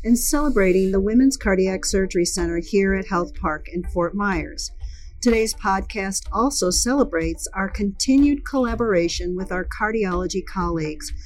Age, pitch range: 50-69, 175-225 Hz